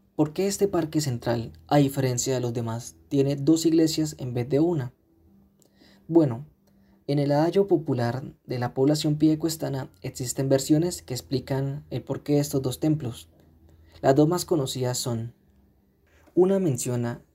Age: 20-39